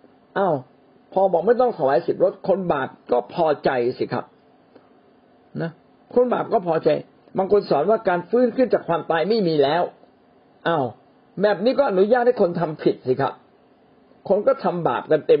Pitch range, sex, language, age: 140-230 Hz, male, Thai, 60-79